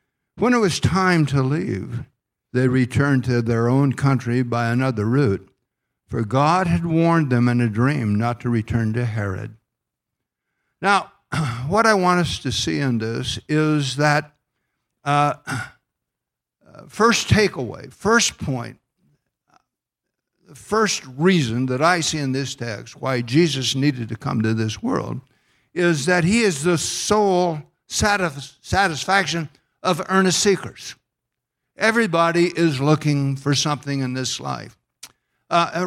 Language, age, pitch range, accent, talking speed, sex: English, 60-79, 120-165 Hz, American, 135 wpm, male